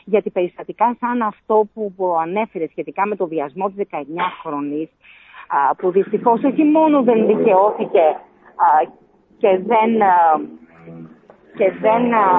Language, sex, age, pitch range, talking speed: Greek, female, 40-59, 185-255 Hz, 100 wpm